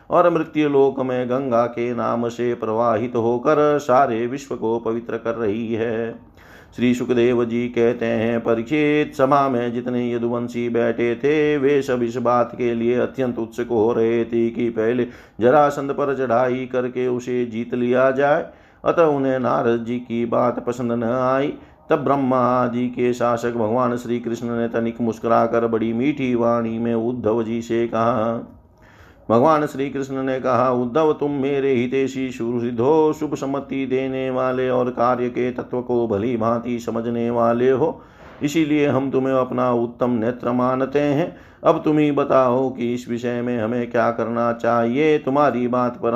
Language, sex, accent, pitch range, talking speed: Hindi, male, native, 120-130 Hz, 160 wpm